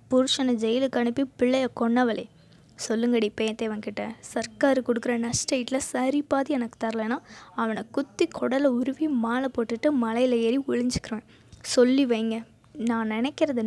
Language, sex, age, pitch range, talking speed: Tamil, female, 20-39, 225-275 Hz, 115 wpm